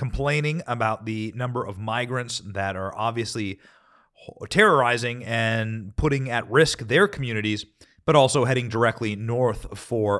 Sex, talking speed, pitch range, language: male, 130 wpm, 105-135 Hz, English